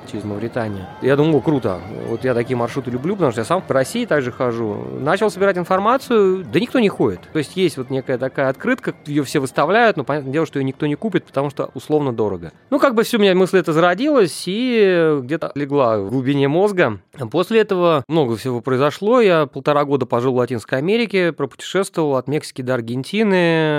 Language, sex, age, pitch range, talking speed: Russian, male, 30-49, 130-180 Hz, 200 wpm